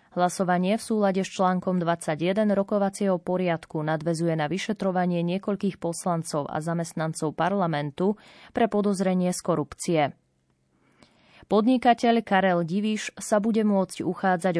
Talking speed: 110 wpm